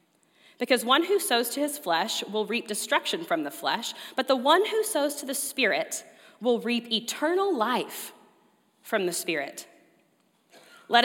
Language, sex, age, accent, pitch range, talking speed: English, female, 30-49, American, 215-295 Hz, 155 wpm